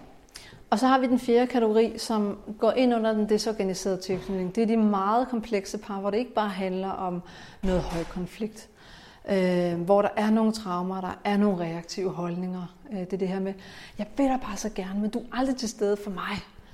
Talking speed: 215 wpm